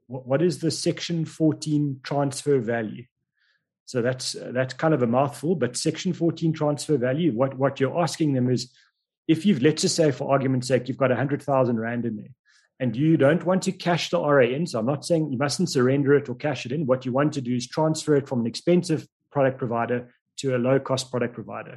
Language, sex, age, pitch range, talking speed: English, male, 30-49, 125-155 Hz, 220 wpm